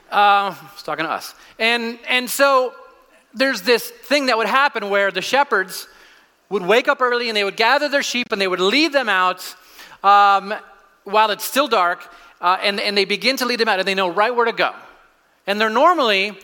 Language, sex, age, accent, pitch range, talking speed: English, male, 30-49, American, 155-220 Hz, 210 wpm